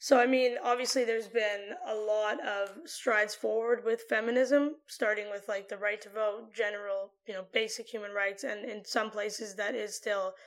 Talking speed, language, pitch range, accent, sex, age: 190 wpm, English, 215-265 Hz, American, female, 10-29